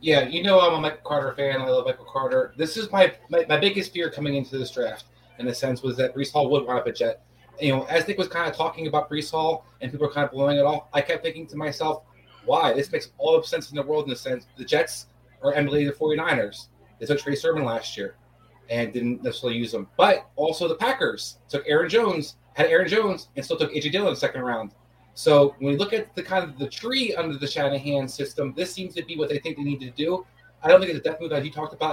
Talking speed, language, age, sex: 270 wpm, English, 30-49, male